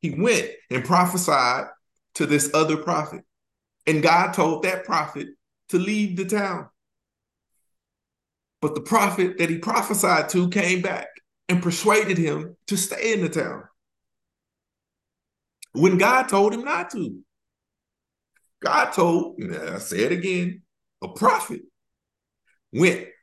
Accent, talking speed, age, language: American, 130 wpm, 50-69, English